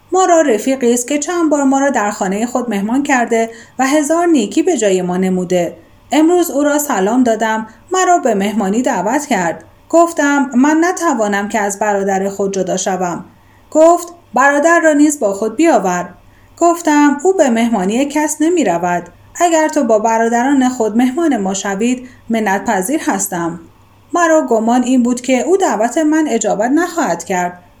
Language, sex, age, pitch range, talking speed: Persian, female, 30-49, 220-315 Hz, 160 wpm